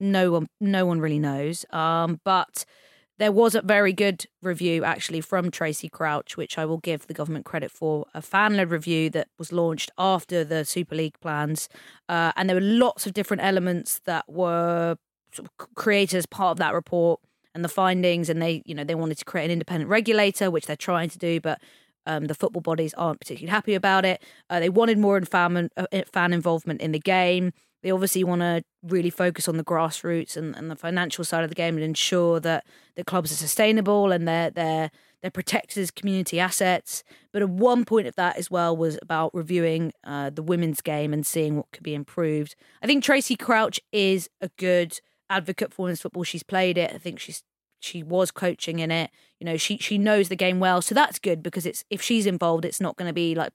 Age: 20-39